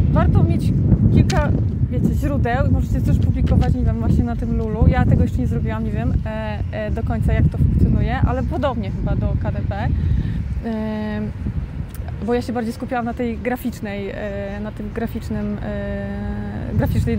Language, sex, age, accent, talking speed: Polish, female, 20-39, native, 140 wpm